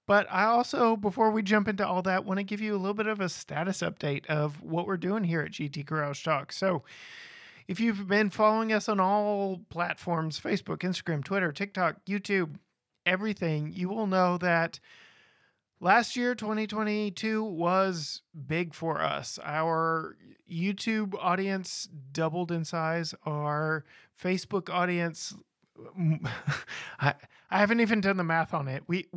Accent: American